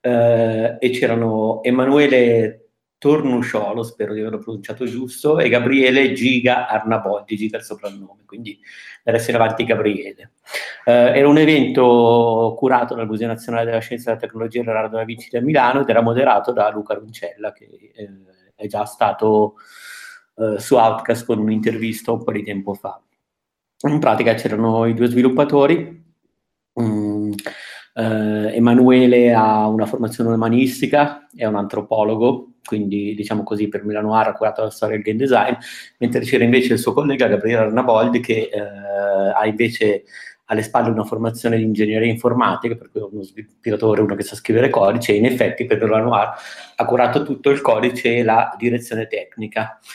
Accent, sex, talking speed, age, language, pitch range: native, male, 160 wpm, 50-69, Italian, 110-125 Hz